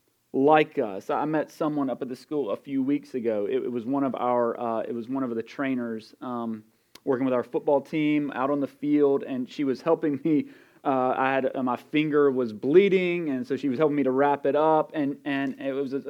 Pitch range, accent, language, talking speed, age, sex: 135-195 Hz, American, English, 235 wpm, 30-49, male